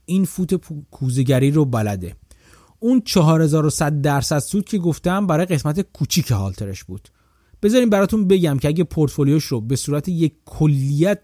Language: Persian